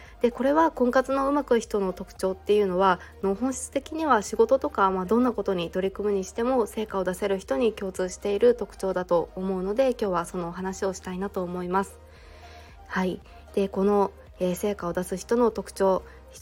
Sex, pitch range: female, 185-230 Hz